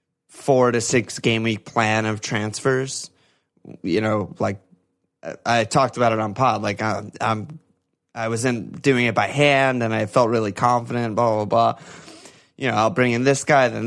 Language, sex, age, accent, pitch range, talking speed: English, male, 20-39, American, 110-130 Hz, 185 wpm